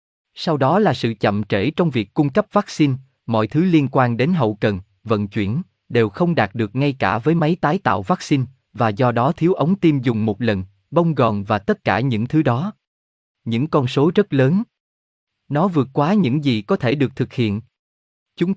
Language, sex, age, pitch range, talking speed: Vietnamese, male, 20-39, 115-170 Hz, 205 wpm